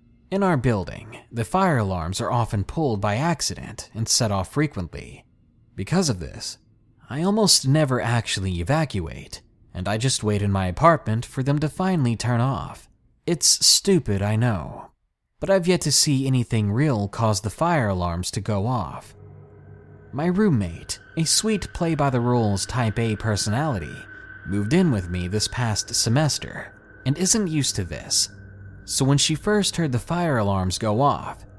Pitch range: 100-150 Hz